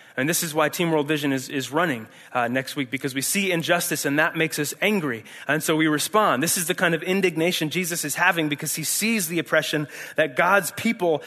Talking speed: 230 wpm